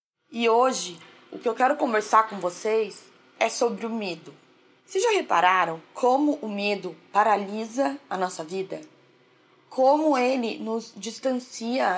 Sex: female